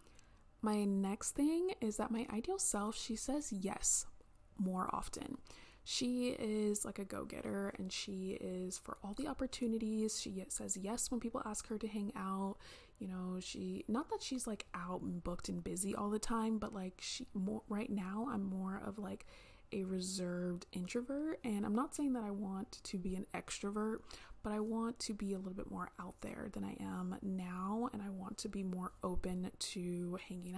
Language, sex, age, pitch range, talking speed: English, female, 20-39, 185-220 Hz, 190 wpm